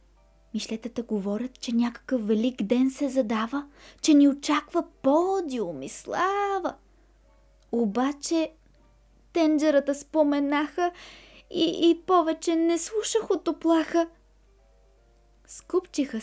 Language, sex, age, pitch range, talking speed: Bulgarian, female, 20-39, 250-315 Hz, 90 wpm